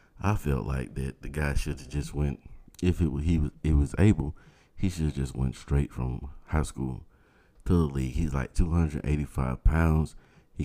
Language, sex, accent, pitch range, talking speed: English, male, American, 70-90 Hz, 205 wpm